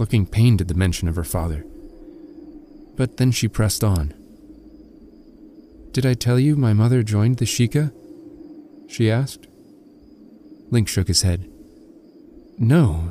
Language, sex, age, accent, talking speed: English, male, 30-49, American, 135 wpm